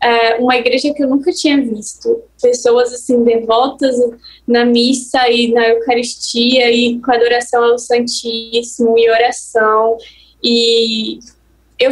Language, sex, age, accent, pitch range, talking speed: Portuguese, female, 10-29, Brazilian, 235-305 Hz, 130 wpm